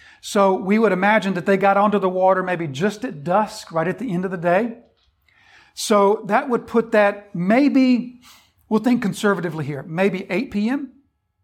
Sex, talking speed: male, 180 wpm